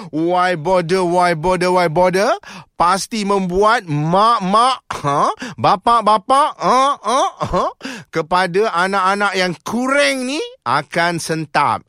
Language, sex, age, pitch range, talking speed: Malay, male, 30-49, 165-220 Hz, 105 wpm